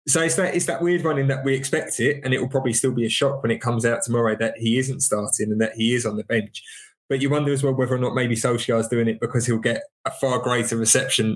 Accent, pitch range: British, 115-130 Hz